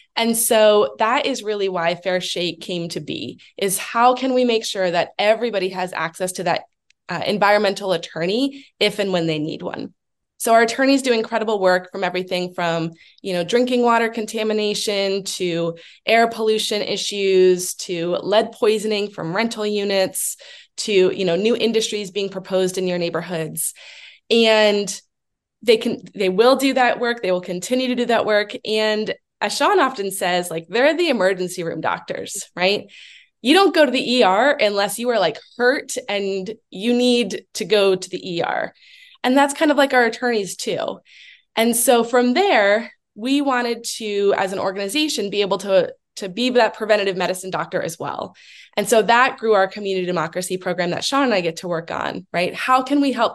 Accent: American